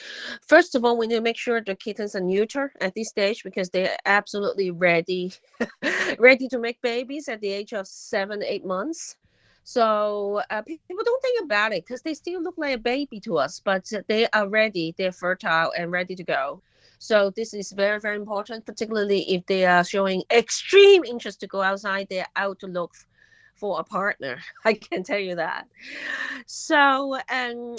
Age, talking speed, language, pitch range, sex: 30-49, 190 wpm, English, 200-265 Hz, female